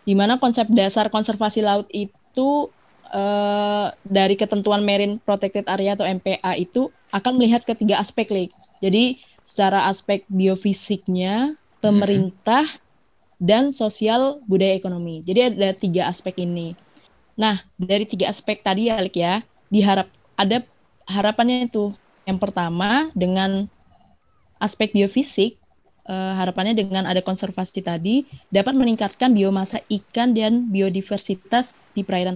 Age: 20-39